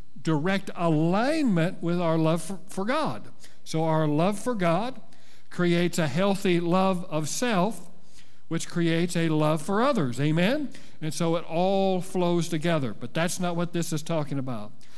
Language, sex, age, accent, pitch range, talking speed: English, male, 50-69, American, 145-185 Hz, 155 wpm